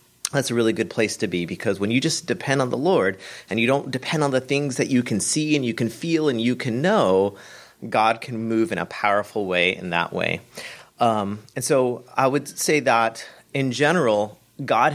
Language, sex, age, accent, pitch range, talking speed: English, male, 30-49, American, 110-140 Hz, 215 wpm